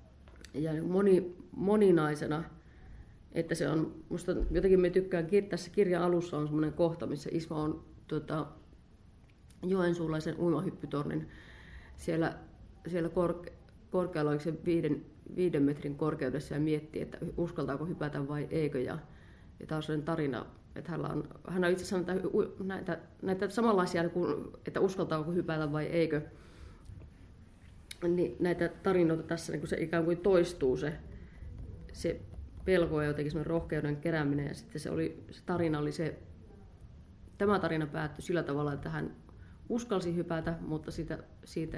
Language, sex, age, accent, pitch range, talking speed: Finnish, female, 30-49, native, 145-175 Hz, 135 wpm